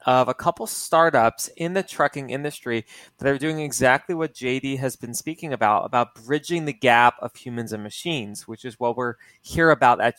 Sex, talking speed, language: male, 195 wpm, English